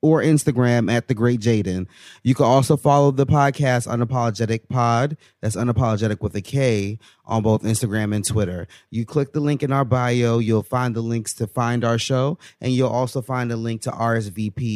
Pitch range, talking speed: 110-130 Hz, 190 wpm